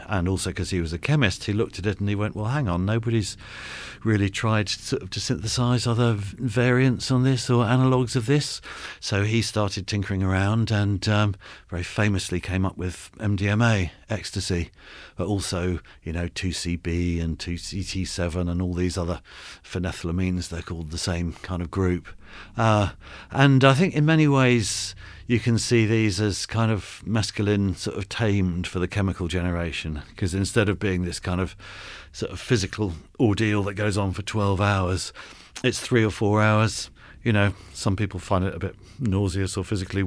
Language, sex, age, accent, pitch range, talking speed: English, male, 50-69, British, 90-105 Hz, 180 wpm